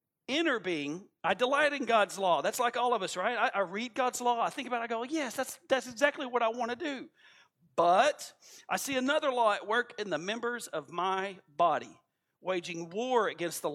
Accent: American